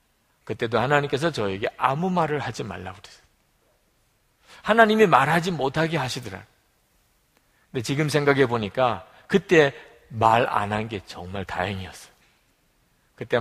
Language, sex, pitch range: Korean, male, 115-180 Hz